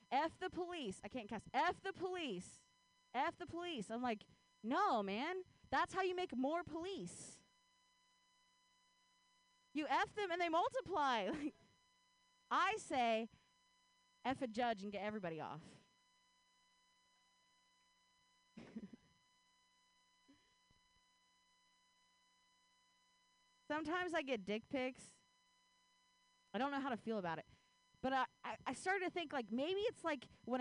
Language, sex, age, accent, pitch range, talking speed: English, female, 30-49, American, 250-370 Hz, 120 wpm